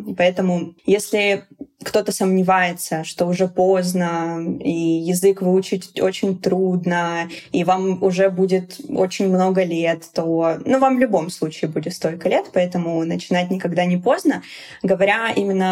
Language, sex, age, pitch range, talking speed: Russian, female, 20-39, 175-200 Hz, 135 wpm